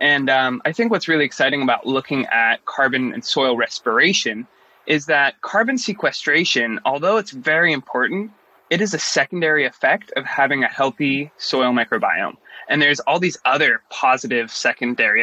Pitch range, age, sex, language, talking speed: 130-170 Hz, 20-39, male, English, 160 wpm